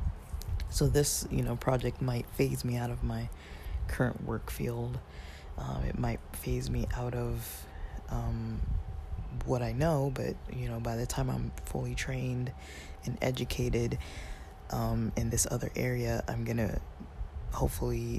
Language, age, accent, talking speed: English, 20-39, American, 150 wpm